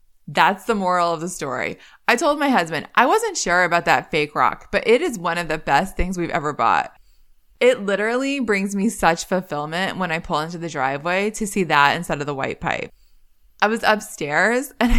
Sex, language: female, English